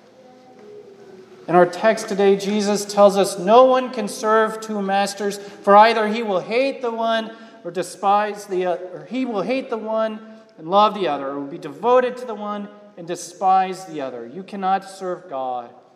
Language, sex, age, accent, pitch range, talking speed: English, male, 40-59, American, 180-245 Hz, 175 wpm